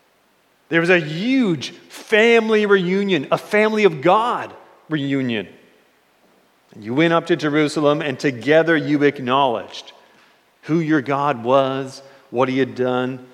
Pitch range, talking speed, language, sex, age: 125-165 Hz, 125 wpm, English, male, 40-59